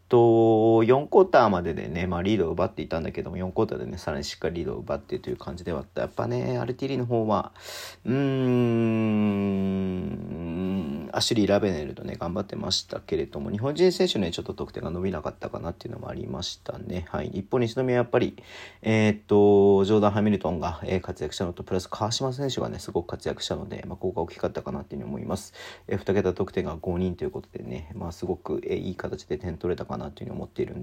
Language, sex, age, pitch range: Japanese, male, 40-59, 90-115 Hz